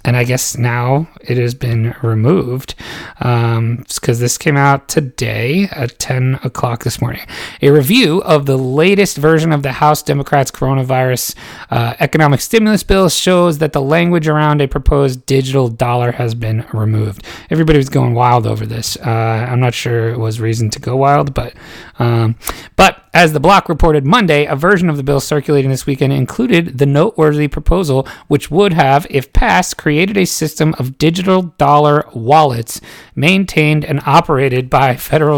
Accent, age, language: American, 30-49, English